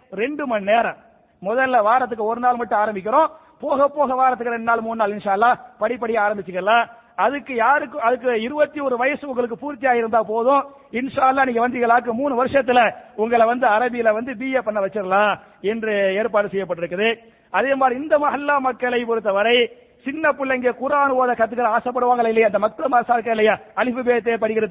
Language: English